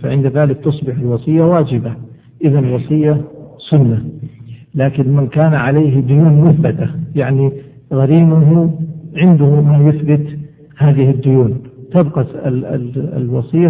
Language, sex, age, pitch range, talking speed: Arabic, male, 60-79, 130-155 Hz, 110 wpm